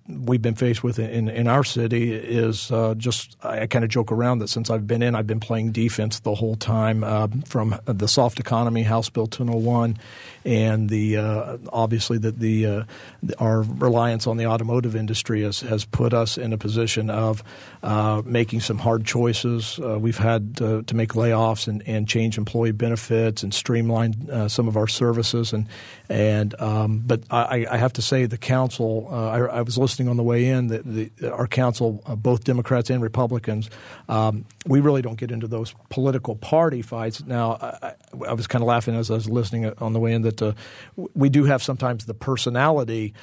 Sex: male